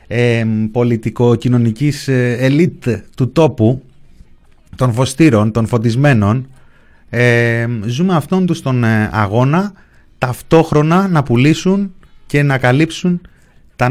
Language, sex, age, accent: Greek, male, 30-49, native